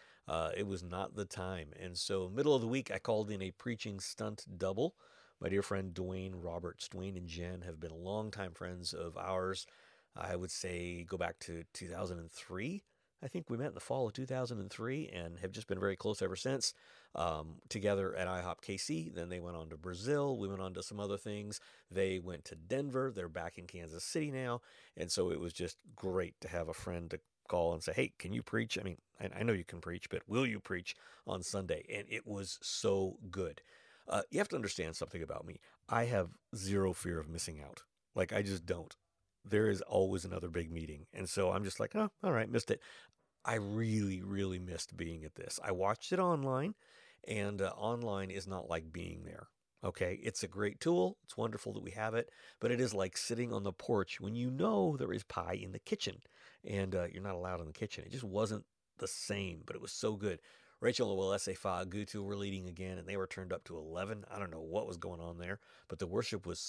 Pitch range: 90-110 Hz